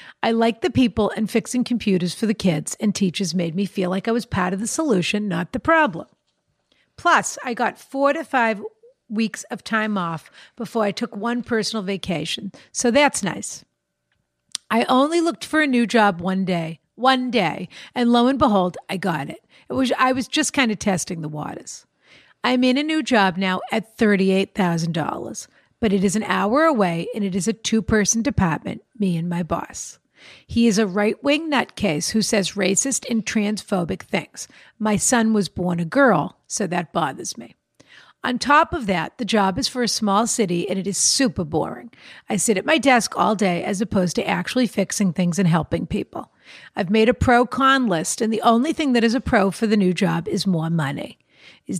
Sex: female